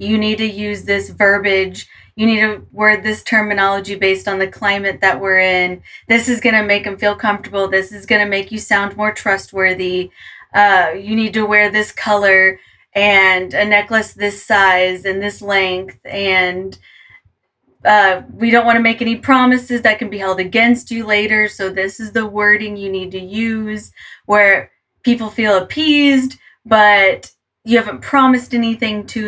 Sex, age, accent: female, 20-39, American